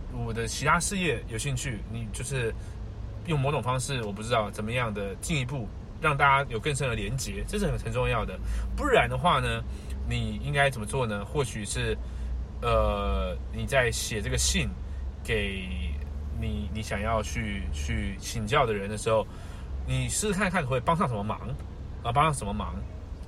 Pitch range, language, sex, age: 95-130 Hz, Chinese, male, 20-39